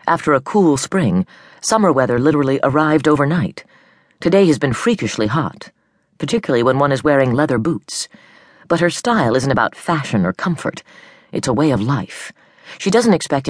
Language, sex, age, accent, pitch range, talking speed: English, female, 40-59, American, 135-180 Hz, 165 wpm